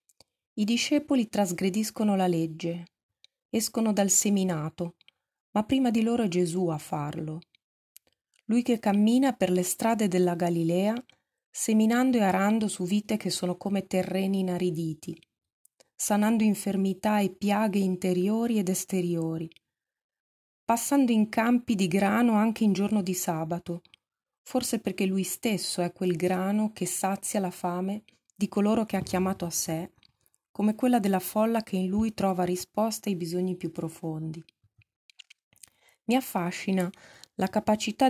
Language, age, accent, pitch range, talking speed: Italian, 30-49, native, 180-215 Hz, 135 wpm